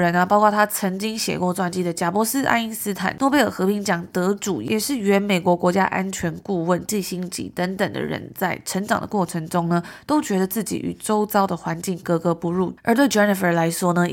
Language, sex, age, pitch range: Chinese, female, 20-39, 180-215 Hz